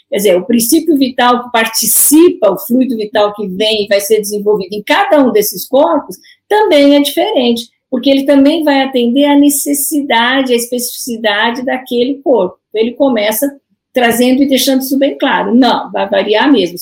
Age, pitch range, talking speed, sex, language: 50-69, 230-285 Hz, 170 wpm, female, Portuguese